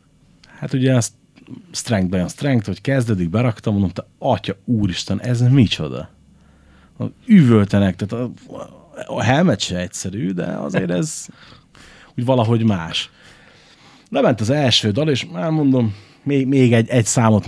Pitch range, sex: 95-125 Hz, male